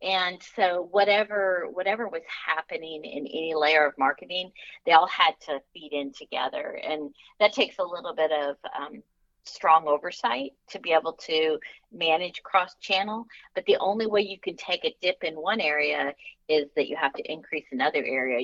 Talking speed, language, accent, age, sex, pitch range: 175 wpm, English, American, 40-59, female, 155-210 Hz